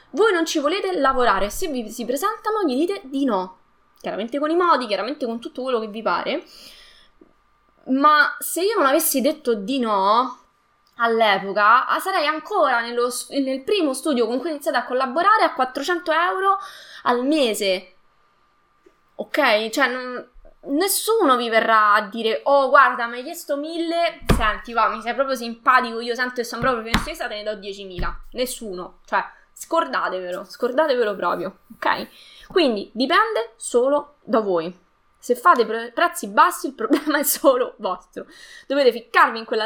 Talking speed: 155 wpm